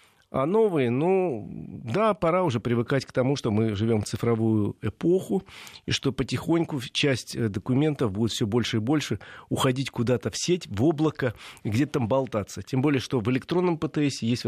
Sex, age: male, 40-59